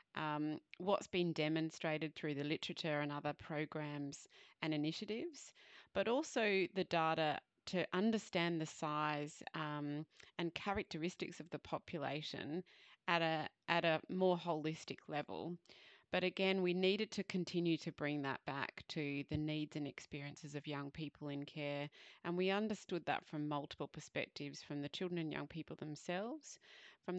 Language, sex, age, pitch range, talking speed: English, female, 30-49, 150-180 Hz, 150 wpm